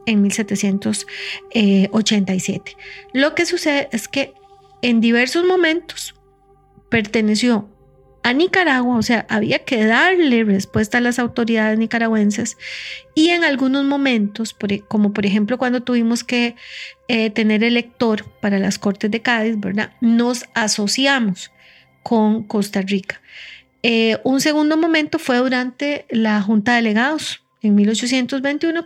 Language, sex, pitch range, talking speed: Spanish, female, 210-255 Hz, 125 wpm